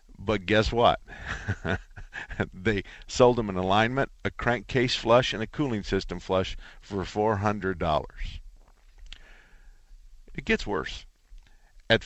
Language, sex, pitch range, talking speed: English, male, 95-120 Hz, 120 wpm